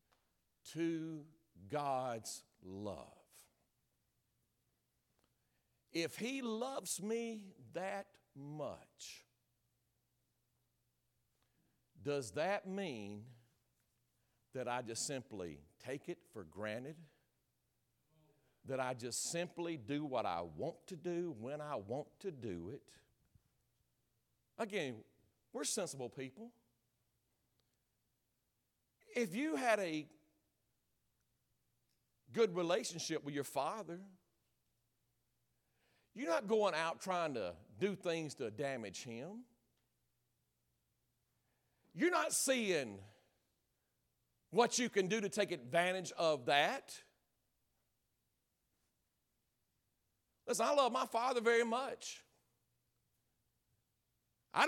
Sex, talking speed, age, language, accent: male, 90 wpm, 50-69, English, American